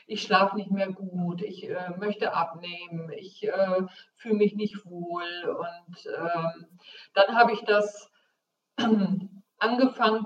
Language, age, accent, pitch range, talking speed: German, 50-69, German, 185-225 Hz, 130 wpm